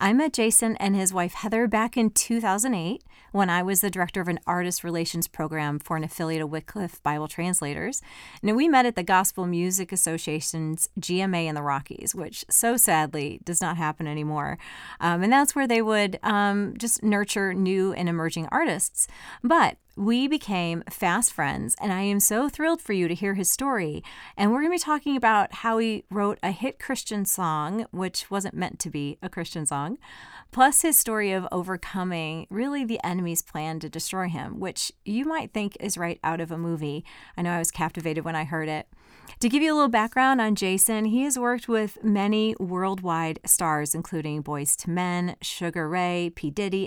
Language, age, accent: English, 40-59, American